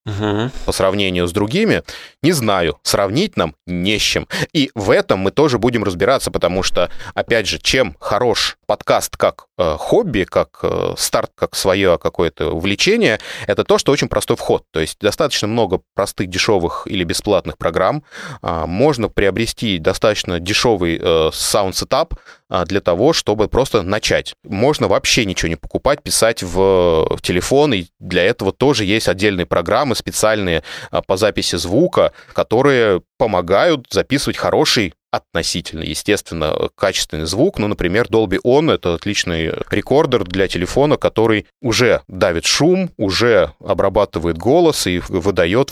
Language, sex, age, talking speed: Russian, male, 20-39, 140 wpm